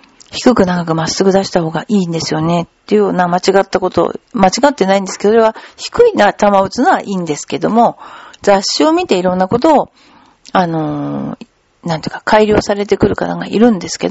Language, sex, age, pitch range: Japanese, female, 40-59, 185-275 Hz